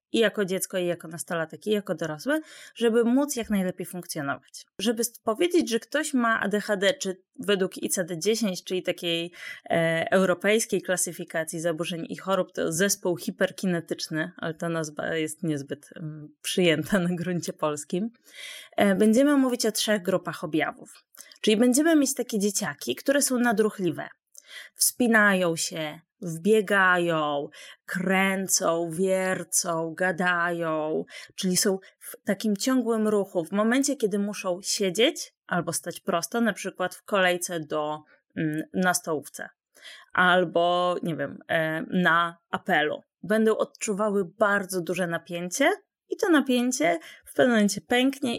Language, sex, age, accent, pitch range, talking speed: Polish, female, 20-39, native, 170-220 Hz, 125 wpm